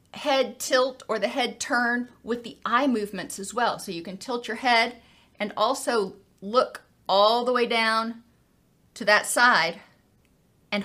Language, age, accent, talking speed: English, 40-59, American, 160 wpm